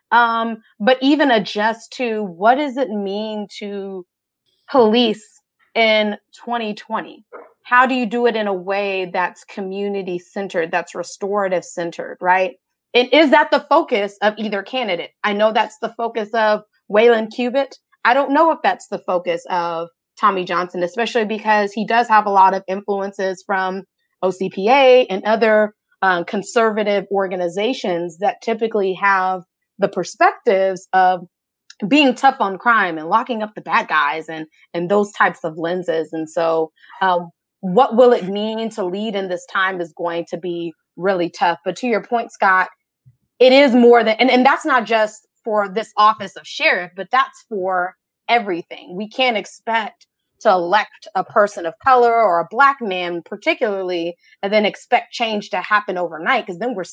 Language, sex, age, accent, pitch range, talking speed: English, female, 30-49, American, 185-230 Hz, 165 wpm